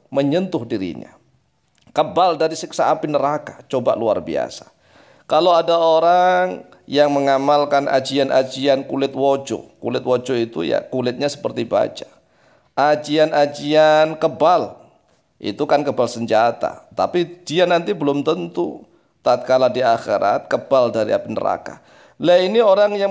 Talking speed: 120 wpm